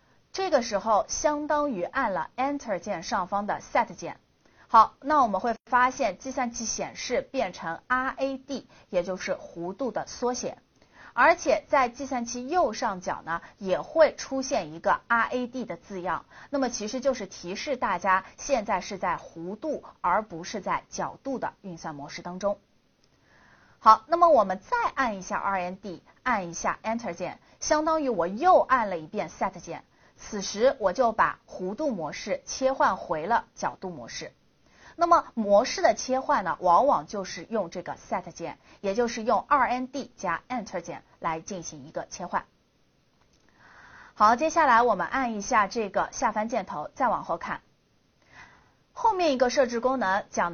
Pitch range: 185-270 Hz